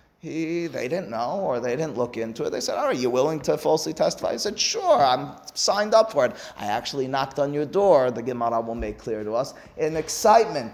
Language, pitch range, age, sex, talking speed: English, 120-160 Hz, 30-49, male, 225 wpm